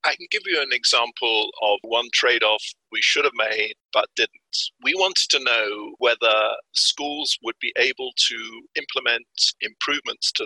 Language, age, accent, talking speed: English, 50-69, British, 160 wpm